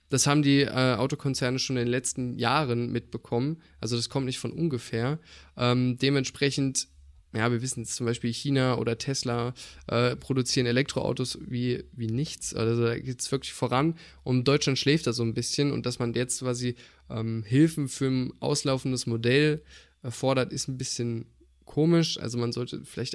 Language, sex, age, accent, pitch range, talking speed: German, male, 20-39, German, 120-140 Hz, 175 wpm